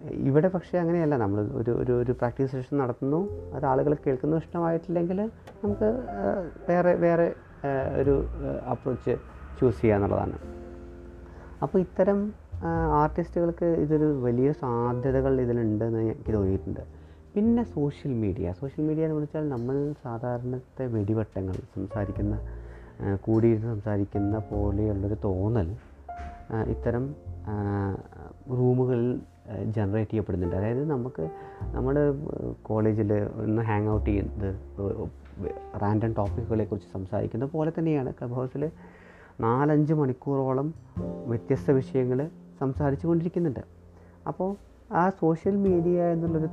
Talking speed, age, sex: 100 wpm, 30-49, male